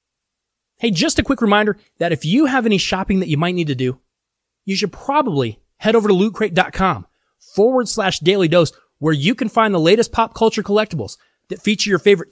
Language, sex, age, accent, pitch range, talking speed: English, male, 30-49, American, 175-225 Hz, 200 wpm